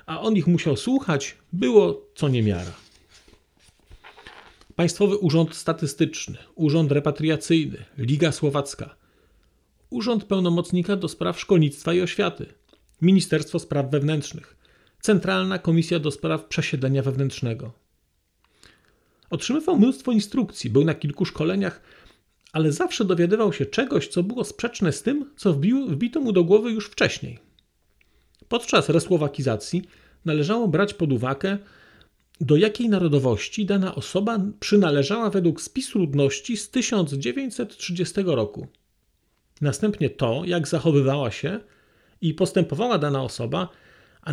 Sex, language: male, Polish